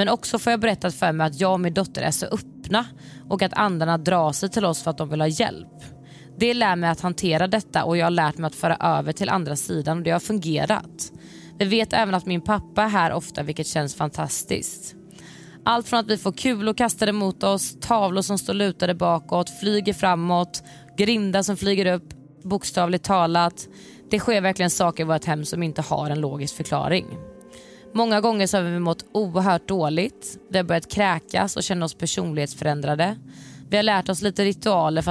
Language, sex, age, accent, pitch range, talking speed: Swedish, female, 20-39, native, 160-200 Hz, 205 wpm